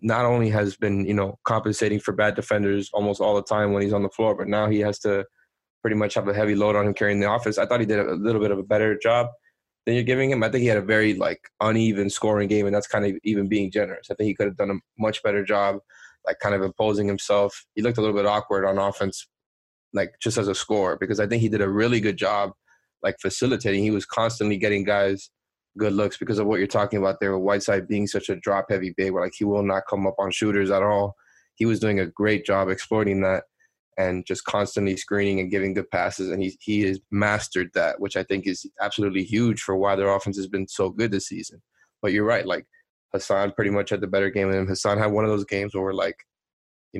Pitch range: 100-105 Hz